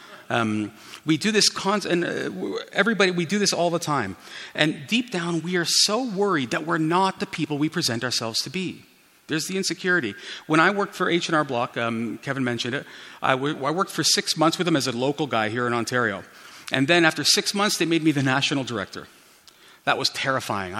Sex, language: male, English